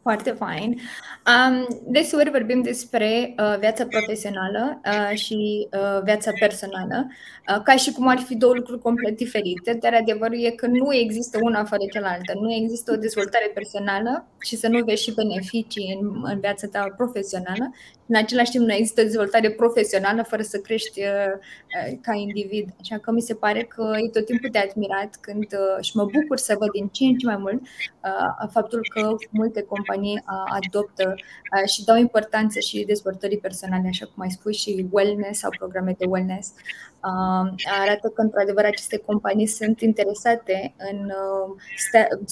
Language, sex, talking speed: Romanian, female, 170 wpm